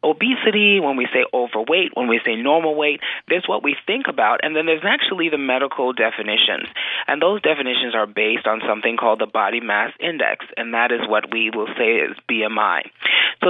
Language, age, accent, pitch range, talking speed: English, 30-49, American, 120-155 Hz, 195 wpm